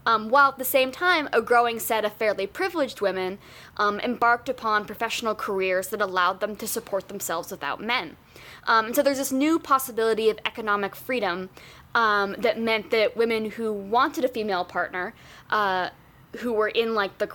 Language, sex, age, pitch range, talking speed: English, female, 10-29, 195-240 Hz, 180 wpm